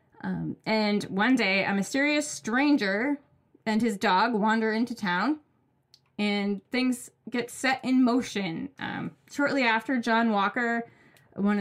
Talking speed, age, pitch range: 130 wpm, 20-39, 185-225 Hz